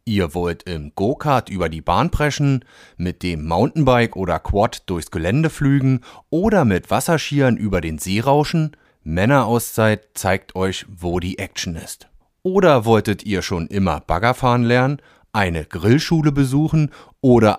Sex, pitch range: male, 95-145 Hz